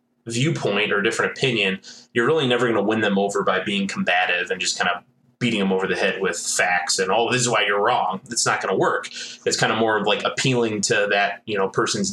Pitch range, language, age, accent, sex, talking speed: 95-120 Hz, English, 20-39, American, male, 255 wpm